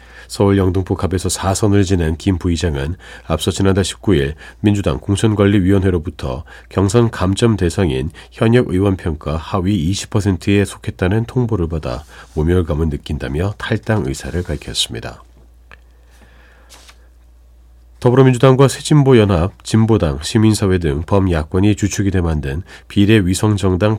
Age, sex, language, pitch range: 40-59, male, Korean, 75-105 Hz